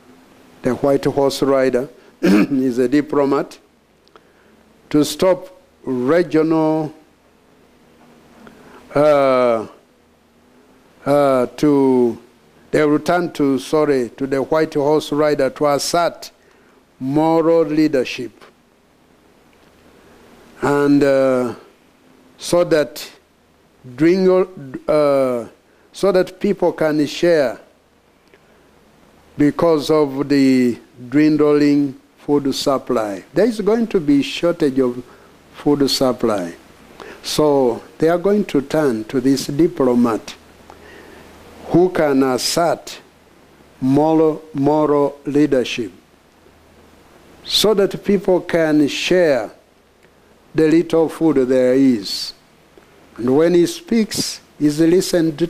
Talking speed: 90 wpm